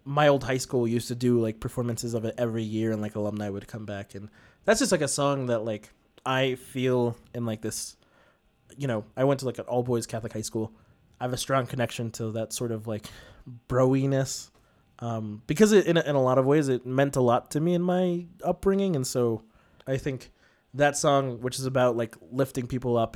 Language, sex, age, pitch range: English, male, 20-39, 110-135 Hz